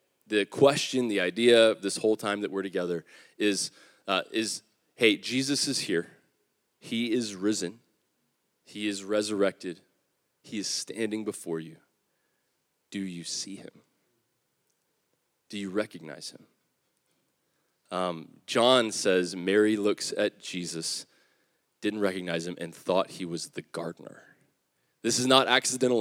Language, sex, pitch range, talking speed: English, male, 105-145 Hz, 130 wpm